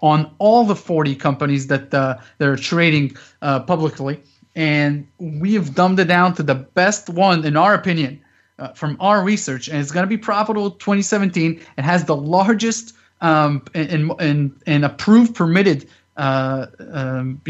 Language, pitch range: English, 145-195 Hz